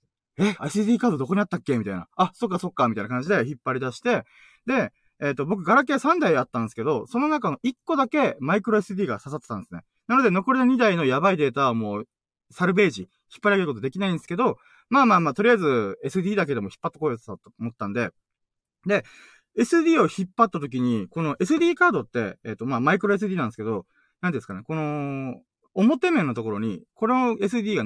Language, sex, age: Japanese, male, 20-39